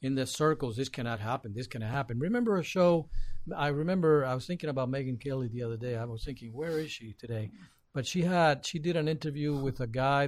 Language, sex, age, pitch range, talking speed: English, male, 50-69, 120-145 Hz, 235 wpm